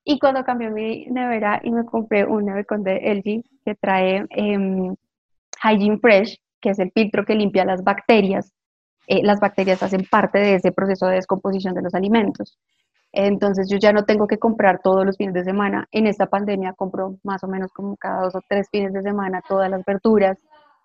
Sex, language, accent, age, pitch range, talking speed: female, Spanish, Colombian, 20-39, 200-245 Hz, 195 wpm